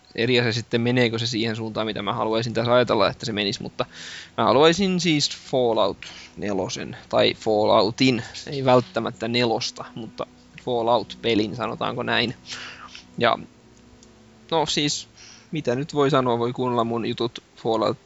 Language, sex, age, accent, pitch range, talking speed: Finnish, male, 20-39, native, 115-130 Hz, 135 wpm